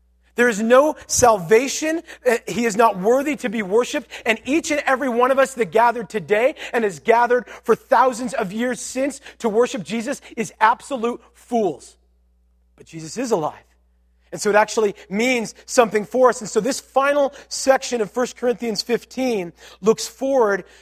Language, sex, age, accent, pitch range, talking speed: English, male, 40-59, American, 175-235 Hz, 165 wpm